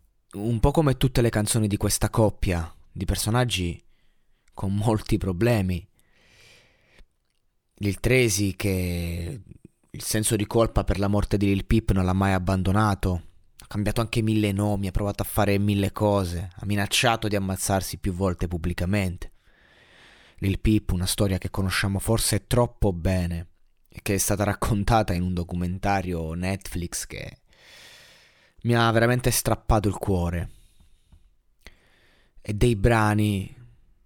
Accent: native